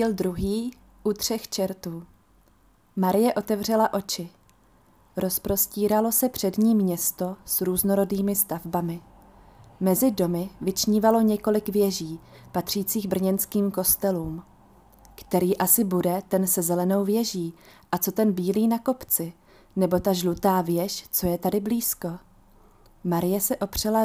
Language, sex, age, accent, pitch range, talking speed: Czech, female, 30-49, native, 175-205 Hz, 115 wpm